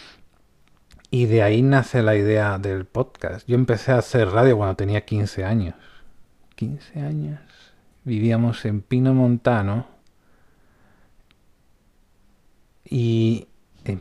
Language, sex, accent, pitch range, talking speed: Spanish, male, Spanish, 95-115 Hz, 105 wpm